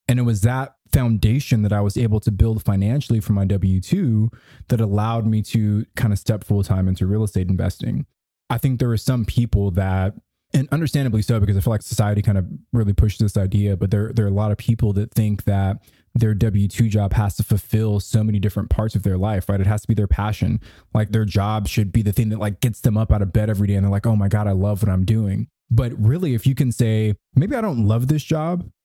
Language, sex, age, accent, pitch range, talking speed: English, male, 20-39, American, 105-120 Hz, 250 wpm